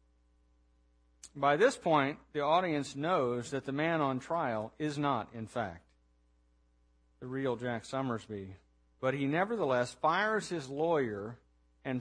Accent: American